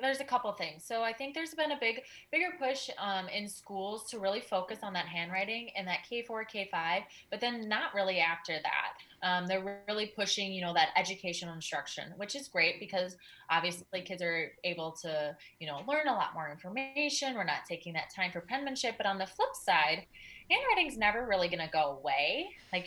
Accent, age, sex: American, 20-39, female